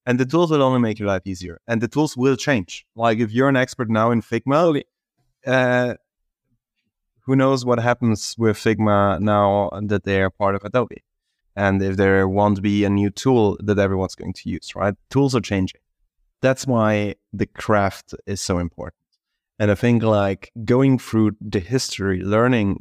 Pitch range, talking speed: 95-120 Hz, 180 wpm